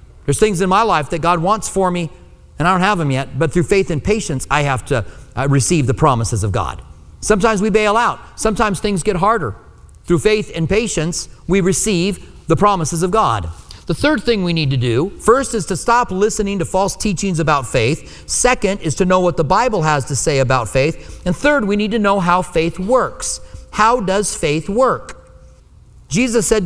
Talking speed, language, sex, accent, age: 205 wpm, English, male, American, 40-59